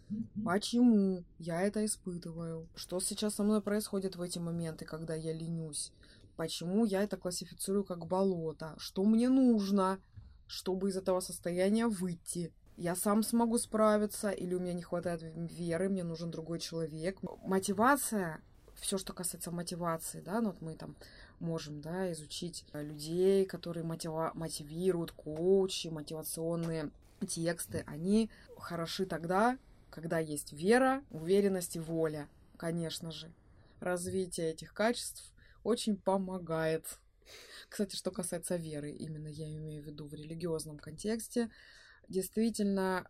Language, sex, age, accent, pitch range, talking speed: Russian, female, 20-39, native, 160-195 Hz, 125 wpm